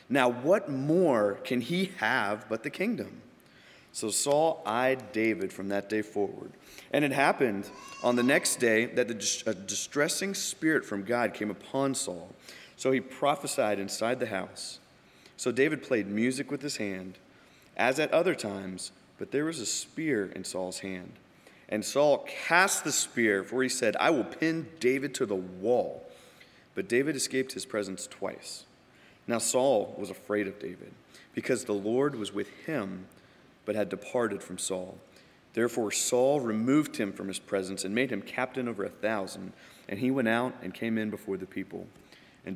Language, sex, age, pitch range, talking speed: English, male, 30-49, 100-135 Hz, 170 wpm